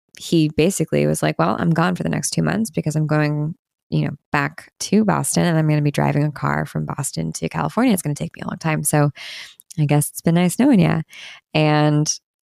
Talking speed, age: 235 wpm, 20-39